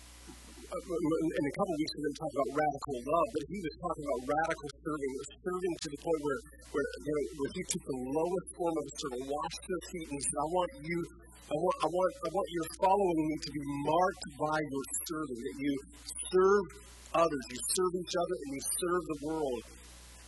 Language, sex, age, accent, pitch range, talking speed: English, female, 20-39, American, 100-150 Hz, 210 wpm